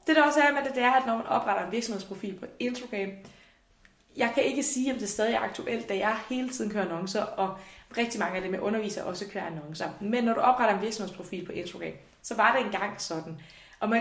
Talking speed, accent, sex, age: 240 wpm, native, female, 20-39